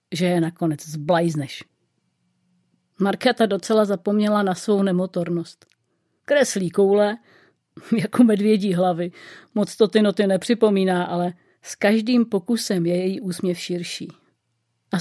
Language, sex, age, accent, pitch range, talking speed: Czech, female, 40-59, native, 180-225 Hz, 120 wpm